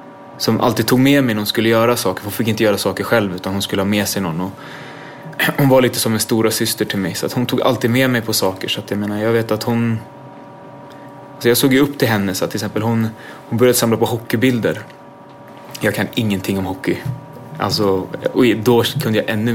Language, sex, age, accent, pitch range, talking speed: English, male, 20-39, Swedish, 105-130 Hz, 235 wpm